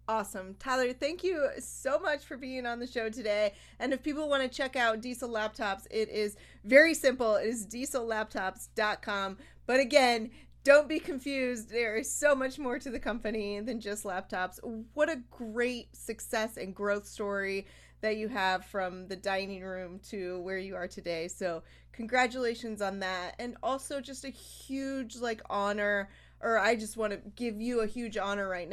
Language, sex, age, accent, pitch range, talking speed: English, female, 30-49, American, 200-255 Hz, 180 wpm